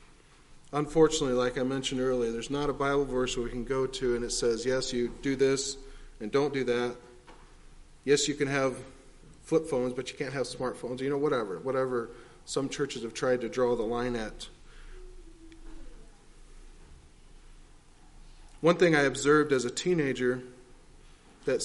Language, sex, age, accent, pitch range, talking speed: English, male, 40-59, American, 125-150 Hz, 160 wpm